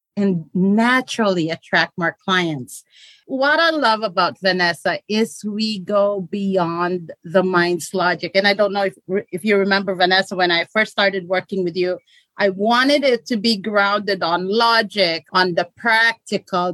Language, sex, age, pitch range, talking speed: English, female, 40-59, 185-230 Hz, 160 wpm